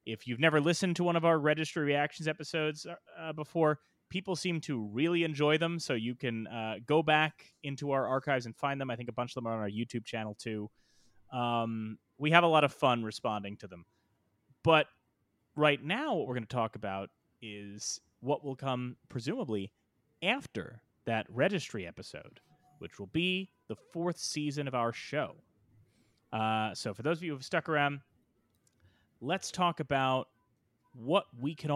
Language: English